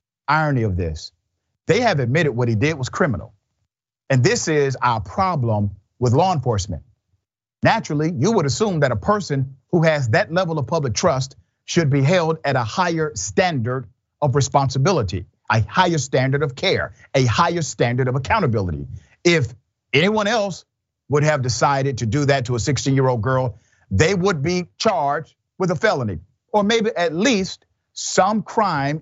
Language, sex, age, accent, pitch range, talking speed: English, male, 50-69, American, 110-160 Hz, 165 wpm